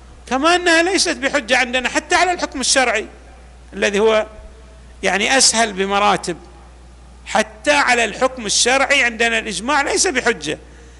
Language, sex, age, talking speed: Arabic, male, 50-69, 120 wpm